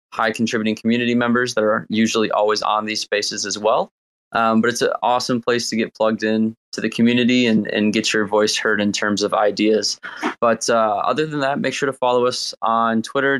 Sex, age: male, 20-39